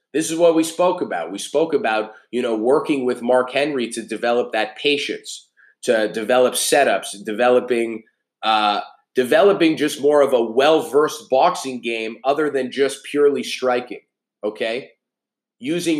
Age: 30-49